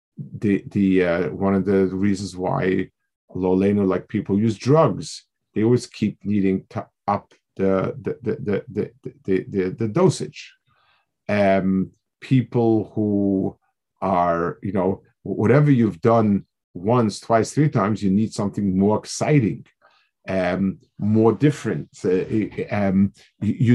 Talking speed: 130 wpm